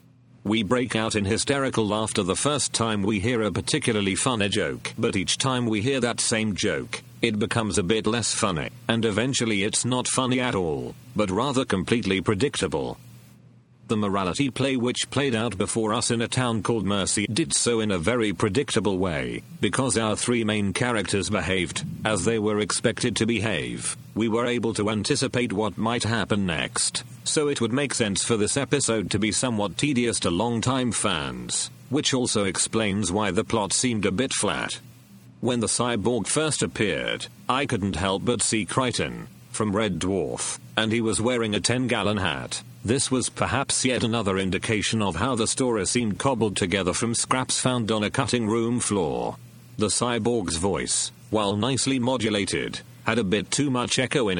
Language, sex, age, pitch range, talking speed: English, male, 40-59, 100-125 Hz, 180 wpm